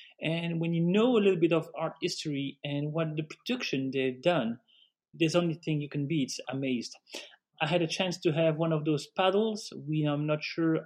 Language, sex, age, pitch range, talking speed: English, male, 30-49, 145-175 Hz, 210 wpm